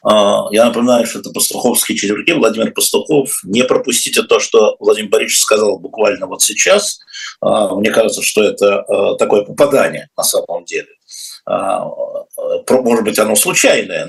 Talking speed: 130 wpm